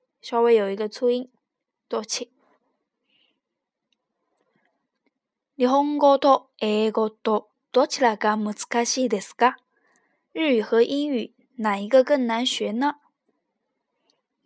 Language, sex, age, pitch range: Chinese, female, 10-29, 230-275 Hz